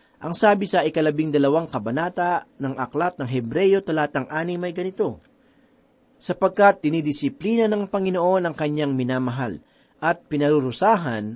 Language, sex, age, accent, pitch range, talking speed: Filipino, male, 40-59, native, 140-200 Hz, 115 wpm